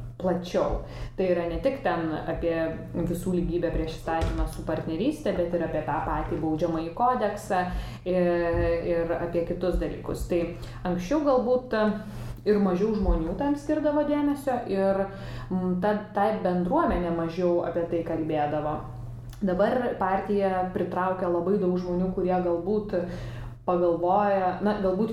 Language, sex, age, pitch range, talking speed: Polish, female, 20-39, 170-205 Hz, 125 wpm